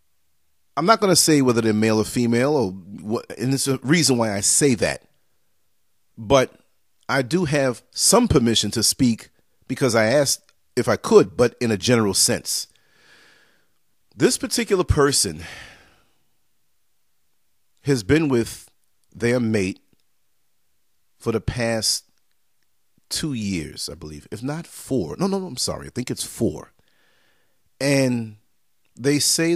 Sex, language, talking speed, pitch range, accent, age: male, English, 140 wpm, 105-140 Hz, American, 40-59